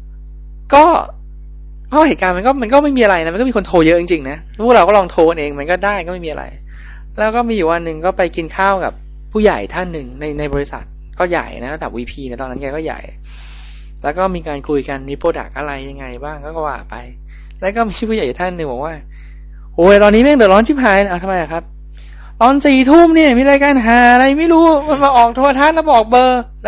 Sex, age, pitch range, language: male, 20-39, 150-230 Hz, Thai